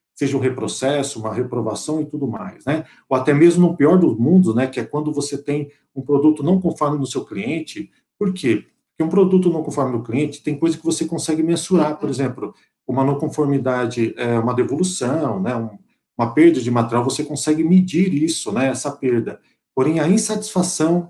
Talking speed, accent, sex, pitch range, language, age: 180 wpm, Brazilian, male, 130-165 Hz, Portuguese, 50-69